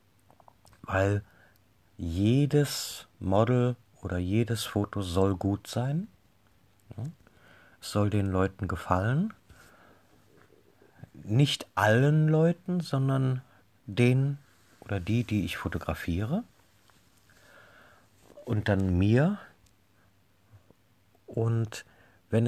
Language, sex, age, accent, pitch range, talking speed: German, male, 50-69, German, 95-115 Hz, 75 wpm